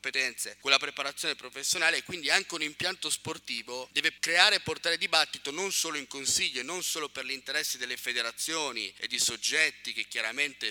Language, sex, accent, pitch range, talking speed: Italian, male, native, 130-170 Hz, 180 wpm